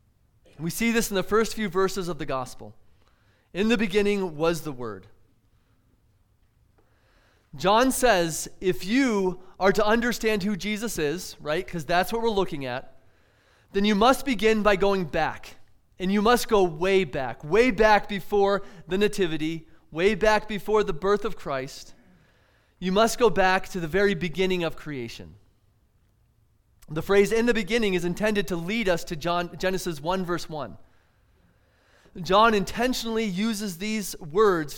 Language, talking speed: English, 155 wpm